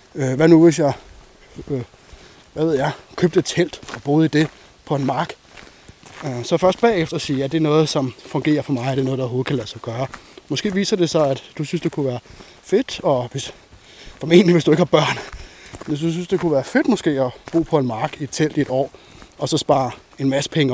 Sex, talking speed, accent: male, 240 wpm, native